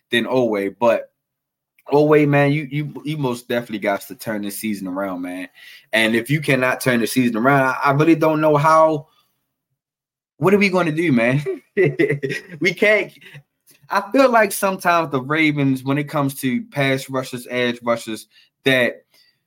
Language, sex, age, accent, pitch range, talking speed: English, male, 20-39, American, 130-155 Hz, 170 wpm